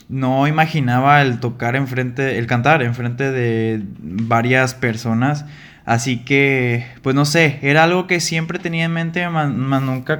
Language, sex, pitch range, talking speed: Spanish, male, 120-145 Hz, 145 wpm